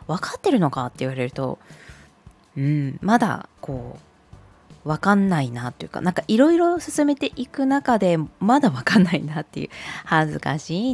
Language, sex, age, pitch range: Japanese, female, 20-39, 145-230 Hz